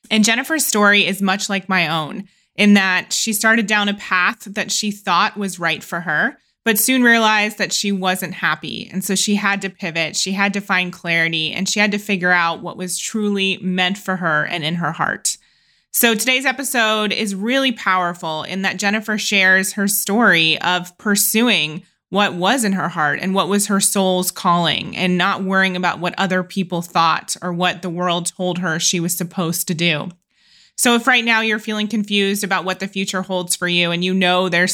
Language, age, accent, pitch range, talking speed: English, 20-39, American, 175-205 Hz, 205 wpm